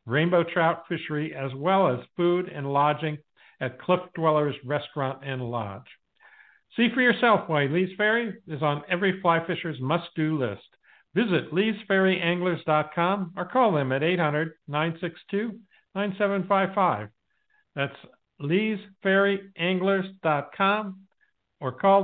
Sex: male